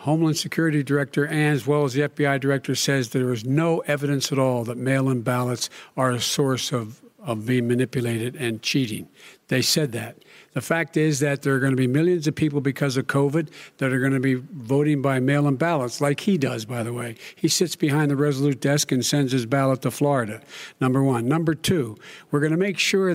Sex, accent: male, American